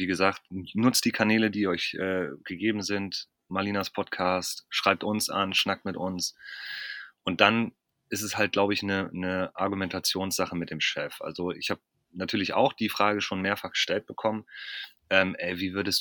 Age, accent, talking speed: 30-49, German, 170 wpm